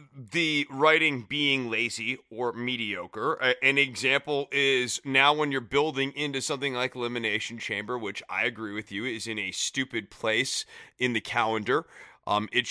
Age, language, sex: 30-49, English, male